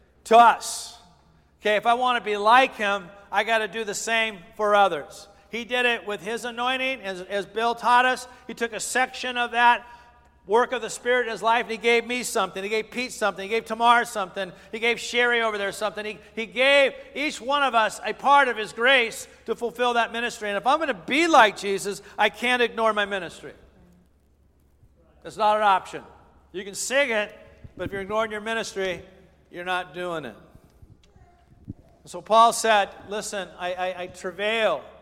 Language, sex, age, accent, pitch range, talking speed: English, male, 50-69, American, 165-225 Hz, 200 wpm